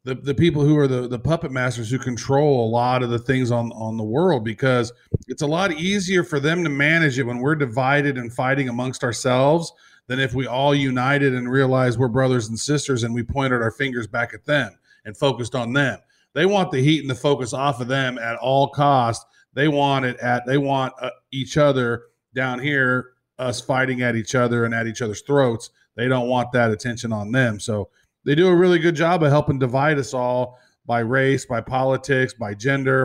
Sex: male